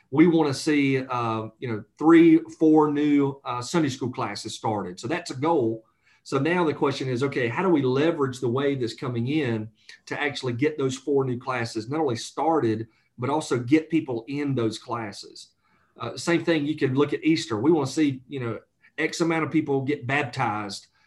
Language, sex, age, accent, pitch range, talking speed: English, male, 40-59, American, 120-155 Hz, 195 wpm